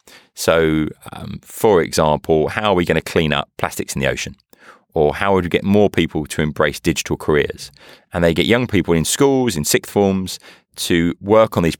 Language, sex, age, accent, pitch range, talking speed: English, male, 30-49, British, 75-100 Hz, 205 wpm